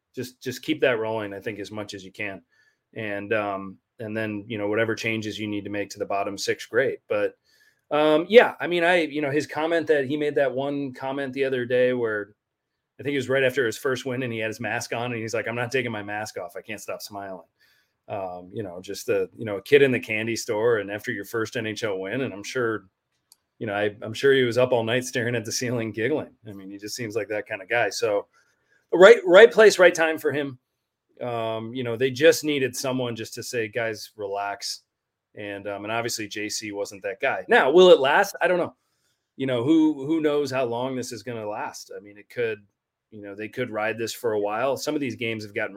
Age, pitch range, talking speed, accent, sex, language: 30-49, 105-150 Hz, 250 wpm, American, male, English